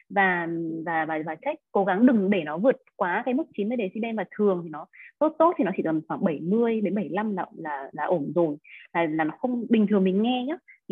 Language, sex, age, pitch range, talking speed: Vietnamese, female, 20-39, 180-250 Hz, 240 wpm